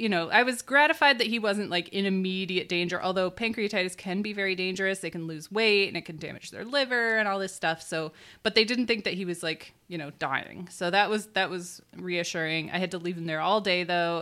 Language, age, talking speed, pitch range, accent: English, 20-39, 250 wpm, 165-200 Hz, American